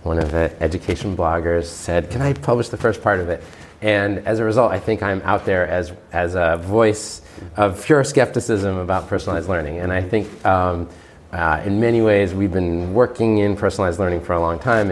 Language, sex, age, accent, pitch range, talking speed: English, male, 30-49, American, 80-100 Hz, 205 wpm